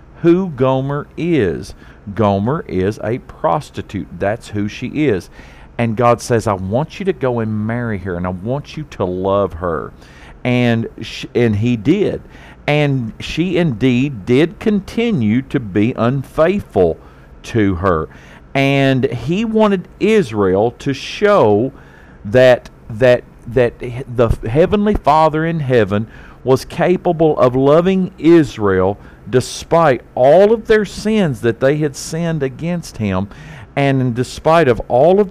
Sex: male